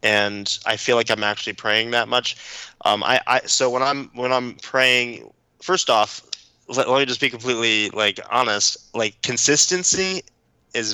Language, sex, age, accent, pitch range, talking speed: English, male, 20-39, American, 105-125 Hz, 170 wpm